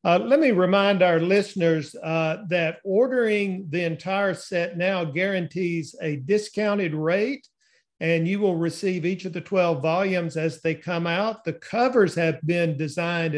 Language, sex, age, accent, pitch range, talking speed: English, male, 50-69, American, 160-195 Hz, 155 wpm